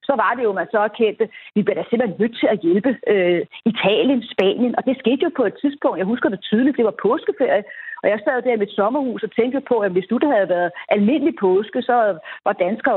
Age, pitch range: 40-59, 200-265 Hz